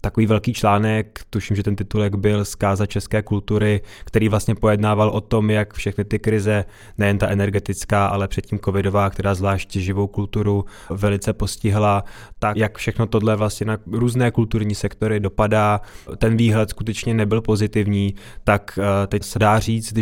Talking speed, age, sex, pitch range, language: 160 wpm, 20-39, male, 100-110 Hz, Czech